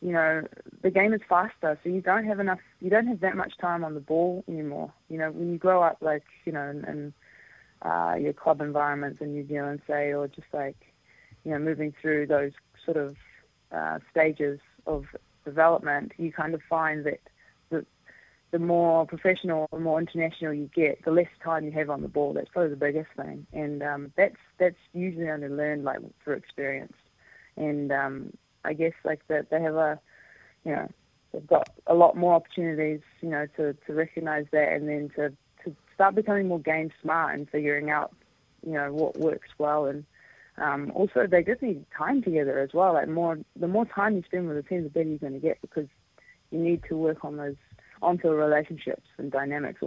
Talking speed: 200 wpm